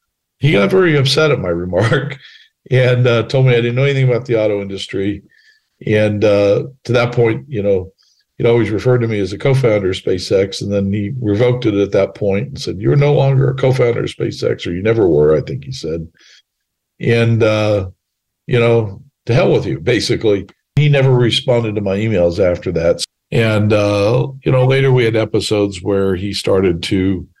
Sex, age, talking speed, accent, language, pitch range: male, 50-69, 195 wpm, American, English, 105-130 Hz